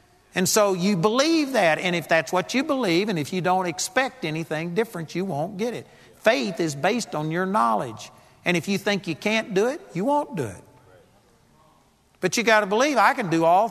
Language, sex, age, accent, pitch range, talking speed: English, male, 50-69, American, 160-225 Hz, 215 wpm